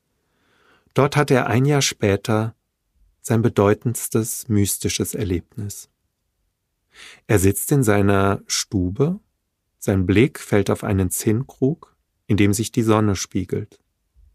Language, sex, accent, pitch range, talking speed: German, male, German, 95-125 Hz, 115 wpm